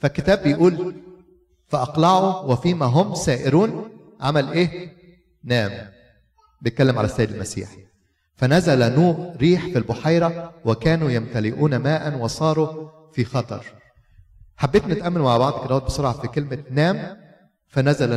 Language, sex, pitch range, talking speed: Arabic, male, 120-160 Hz, 110 wpm